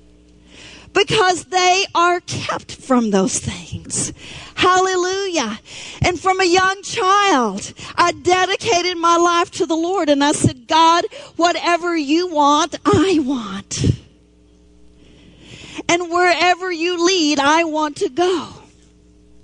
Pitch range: 245-345 Hz